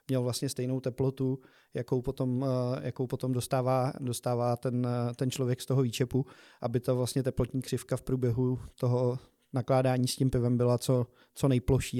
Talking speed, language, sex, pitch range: 155 wpm, Slovak, male, 125-135 Hz